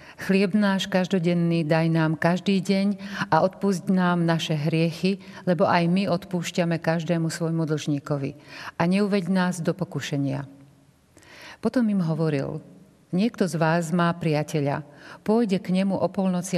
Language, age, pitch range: Slovak, 50-69, 155-190 Hz